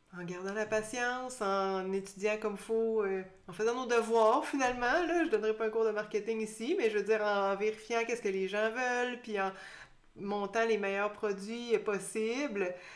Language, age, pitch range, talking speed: French, 30-49, 185-220 Hz, 215 wpm